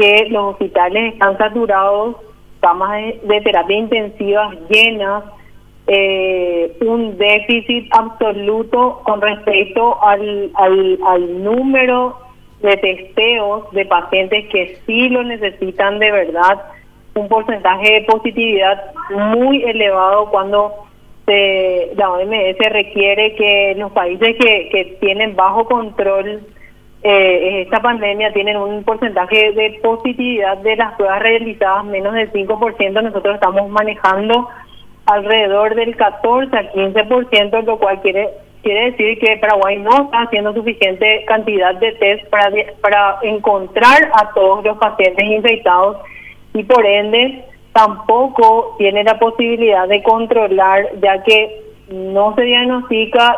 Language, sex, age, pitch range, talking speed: Spanish, female, 30-49, 200-225 Hz, 120 wpm